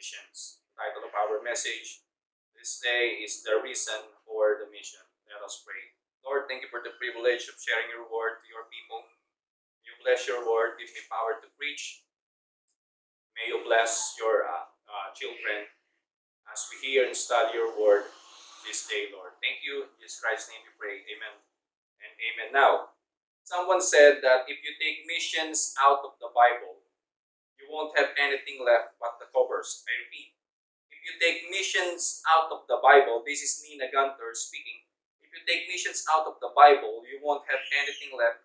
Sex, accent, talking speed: male, Filipino, 180 wpm